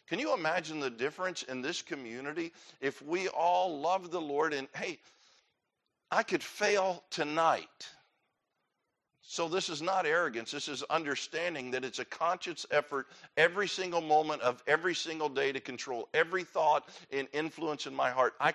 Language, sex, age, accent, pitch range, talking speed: English, male, 50-69, American, 145-185 Hz, 160 wpm